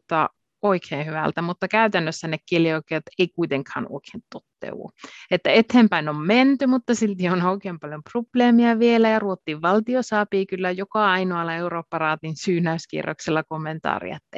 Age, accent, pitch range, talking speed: 30-49, native, 160-210 Hz, 135 wpm